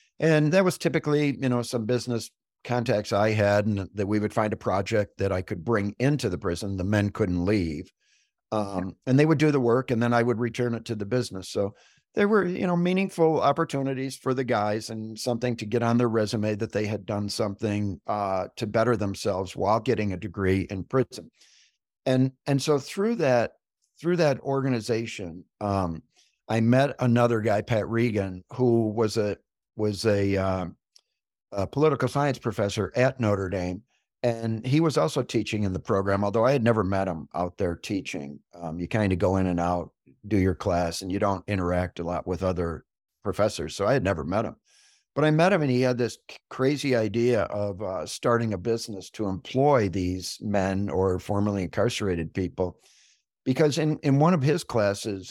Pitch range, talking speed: 95-125 Hz, 190 wpm